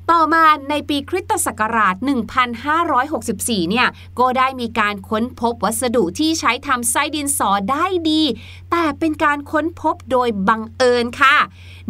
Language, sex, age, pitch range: Thai, female, 30-49, 230-320 Hz